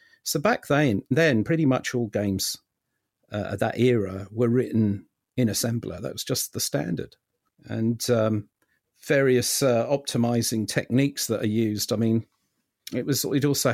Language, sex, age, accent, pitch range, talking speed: English, male, 50-69, British, 110-130 Hz, 155 wpm